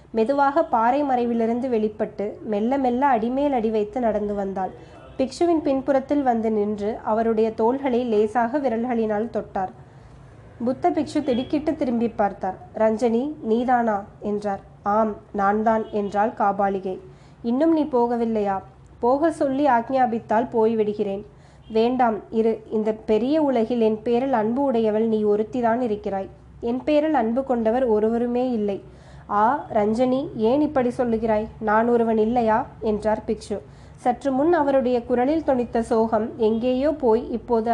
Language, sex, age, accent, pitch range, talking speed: Tamil, female, 20-39, native, 215-255 Hz, 120 wpm